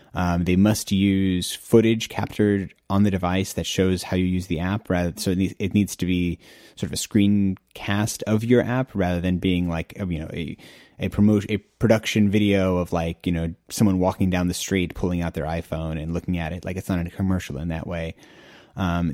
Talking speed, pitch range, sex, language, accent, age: 225 wpm, 90-105 Hz, male, English, American, 30-49